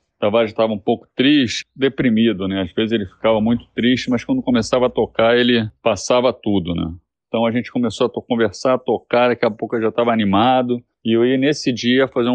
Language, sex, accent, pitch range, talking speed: Portuguese, male, Brazilian, 110-135 Hz, 220 wpm